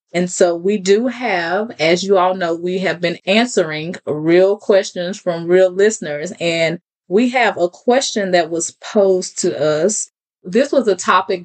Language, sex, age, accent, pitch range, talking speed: English, female, 20-39, American, 170-190 Hz, 170 wpm